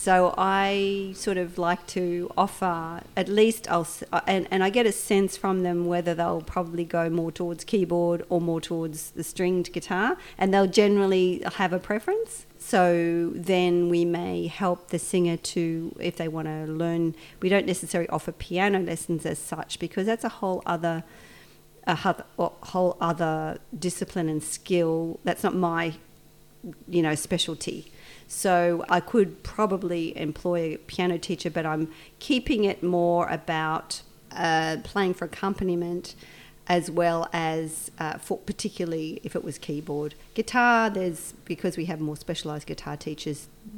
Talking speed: 155 wpm